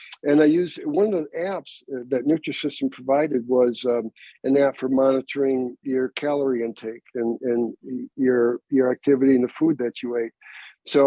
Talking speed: 170 wpm